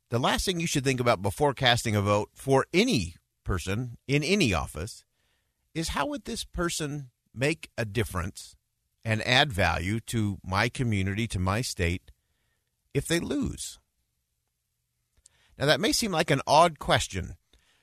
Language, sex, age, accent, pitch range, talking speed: English, male, 50-69, American, 105-145 Hz, 150 wpm